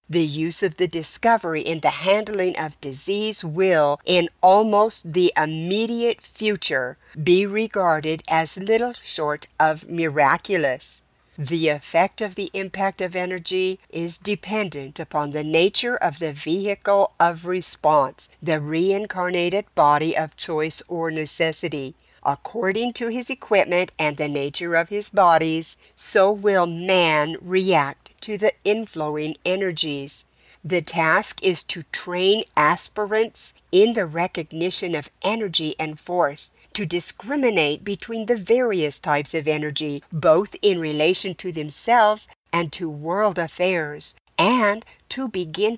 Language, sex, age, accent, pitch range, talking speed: English, female, 50-69, American, 160-205 Hz, 125 wpm